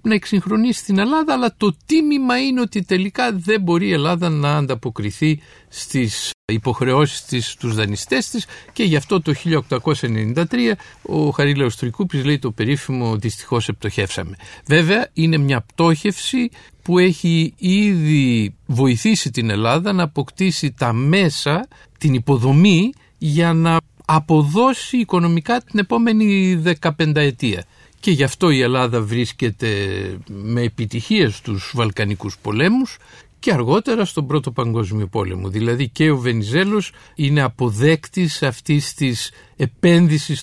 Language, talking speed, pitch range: Greek, 125 wpm, 120-180 Hz